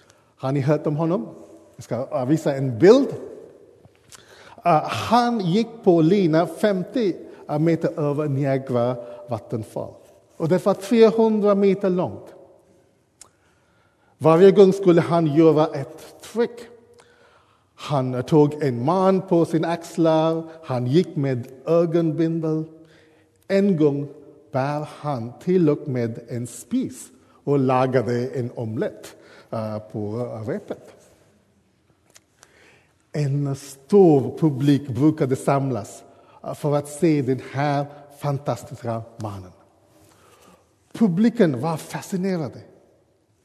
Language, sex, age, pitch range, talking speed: Swedish, male, 50-69, 125-175 Hz, 100 wpm